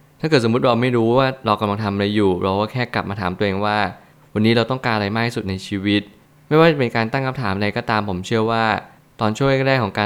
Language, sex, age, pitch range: Thai, male, 20-39, 105-120 Hz